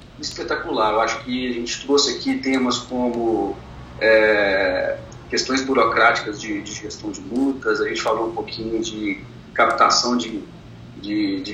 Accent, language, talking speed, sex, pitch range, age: Brazilian, Portuguese, 135 wpm, male, 110-140 Hz, 40-59